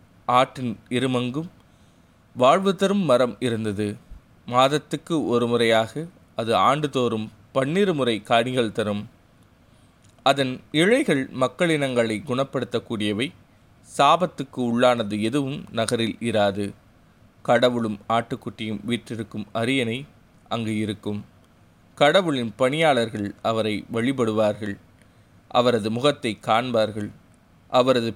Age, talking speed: 30-49, 80 wpm